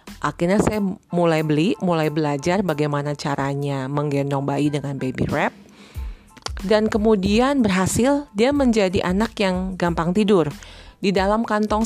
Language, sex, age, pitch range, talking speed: Indonesian, female, 30-49, 145-200 Hz, 125 wpm